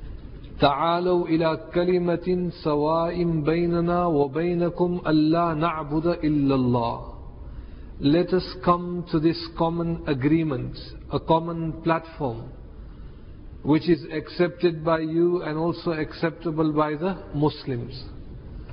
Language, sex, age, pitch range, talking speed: English, male, 50-69, 150-180 Hz, 100 wpm